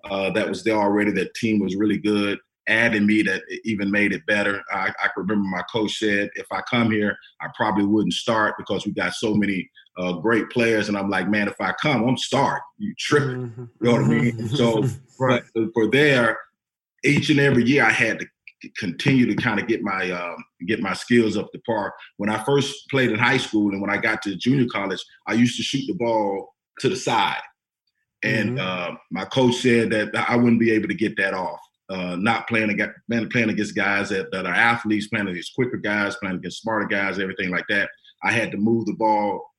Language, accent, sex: English, American, male